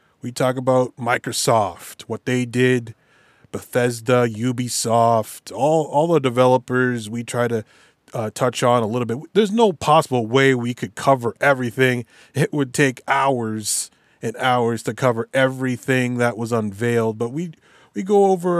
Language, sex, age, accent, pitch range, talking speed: English, male, 30-49, American, 120-140 Hz, 150 wpm